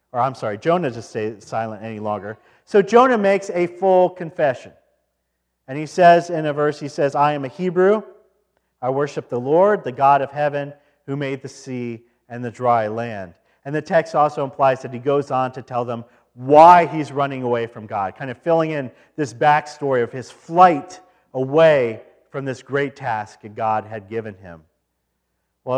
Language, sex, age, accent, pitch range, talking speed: English, male, 40-59, American, 125-180 Hz, 190 wpm